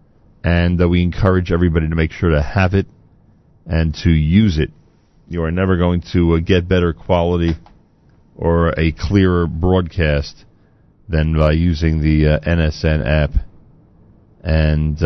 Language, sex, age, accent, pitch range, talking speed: English, male, 40-59, American, 85-115 Hz, 145 wpm